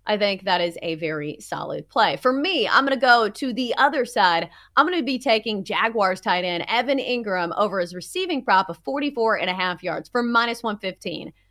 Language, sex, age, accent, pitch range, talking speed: English, female, 30-49, American, 180-255 Hz, 215 wpm